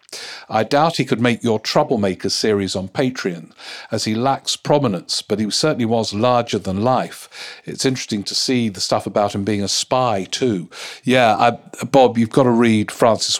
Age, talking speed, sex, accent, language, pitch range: 50-69, 185 wpm, male, British, English, 105-130 Hz